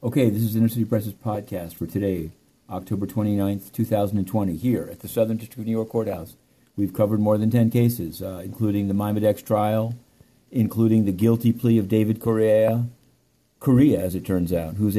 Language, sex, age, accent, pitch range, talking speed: English, male, 50-69, American, 105-125 Hz, 180 wpm